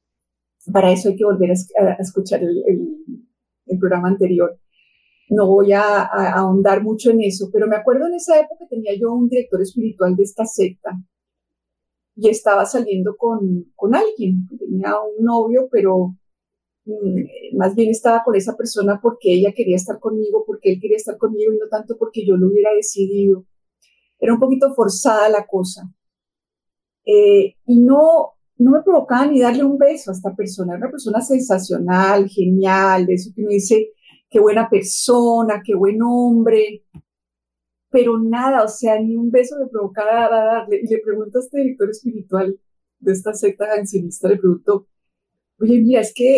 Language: Spanish